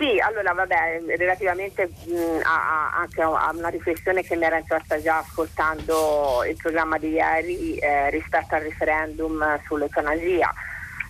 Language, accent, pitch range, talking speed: Italian, native, 160-200 Hz, 130 wpm